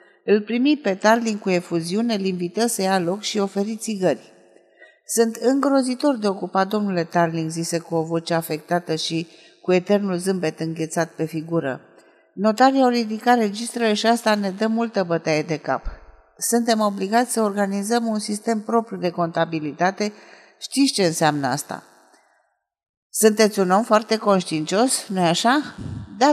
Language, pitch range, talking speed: Romanian, 170-230 Hz, 150 wpm